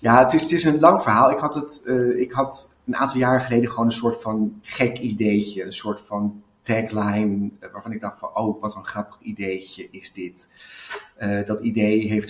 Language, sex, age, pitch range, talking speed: Dutch, male, 30-49, 100-120 Hz, 215 wpm